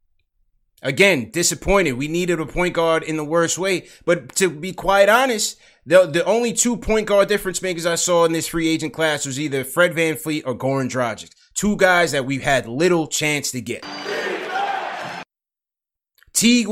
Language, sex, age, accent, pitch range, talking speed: English, male, 20-39, American, 140-180 Hz, 175 wpm